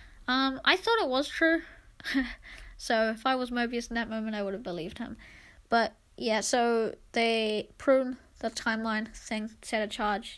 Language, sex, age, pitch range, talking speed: English, female, 20-39, 215-245 Hz, 175 wpm